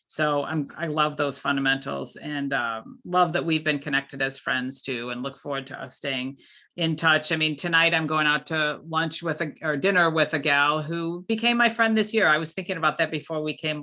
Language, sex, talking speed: English, female, 230 wpm